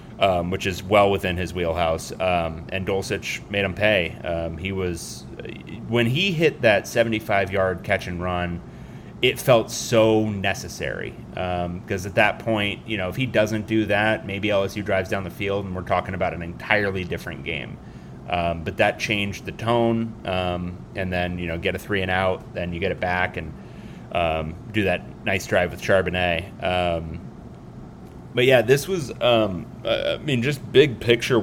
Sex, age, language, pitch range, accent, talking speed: male, 30-49, English, 90-115 Hz, American, 180 wpm